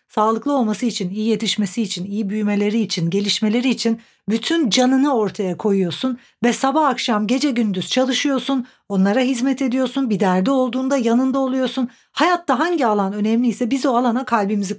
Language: Turkish